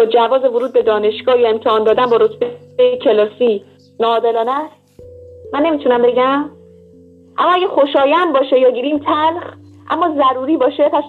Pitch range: 230-325 Hz